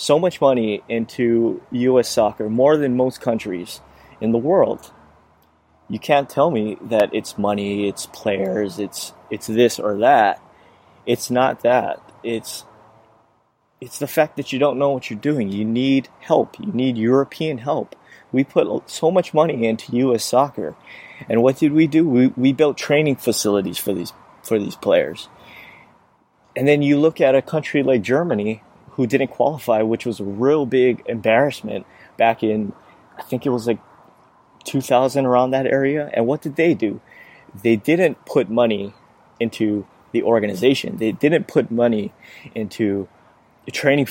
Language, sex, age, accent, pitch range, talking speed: English, male, 30-49, American, 110-140 Hz, 160 wpm